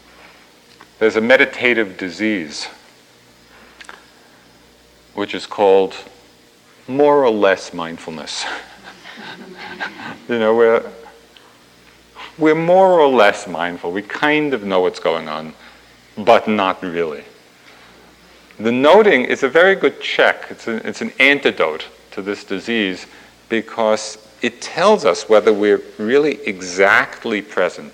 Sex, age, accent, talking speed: male, 50-69, American, 115 wpm